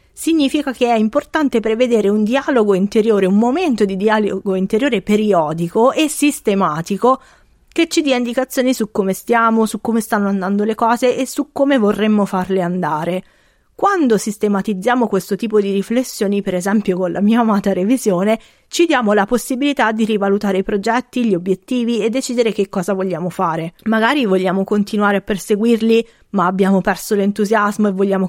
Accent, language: native, Italian